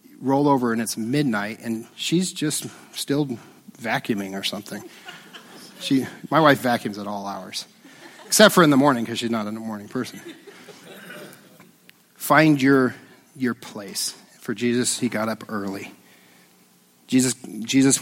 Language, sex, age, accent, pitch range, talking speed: English, male, 40-59, American, 110-140 Hz, 140 wpm